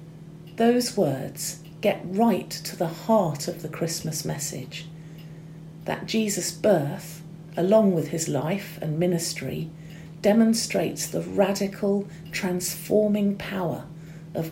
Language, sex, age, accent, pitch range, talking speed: English, female, 50-69, British, 160-190 Hz, 110 wpm